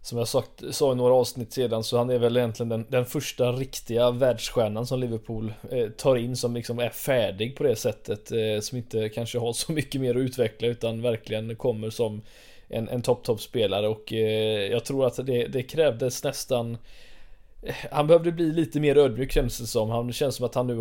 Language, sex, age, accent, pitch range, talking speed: Swedish, male, 20-39, native, 110-130 Hz, 210 wpm